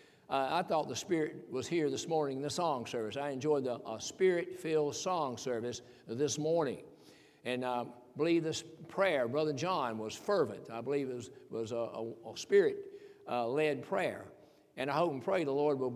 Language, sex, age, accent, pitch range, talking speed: English, male, 60-79, American, 145-195 Hz, 190 wpm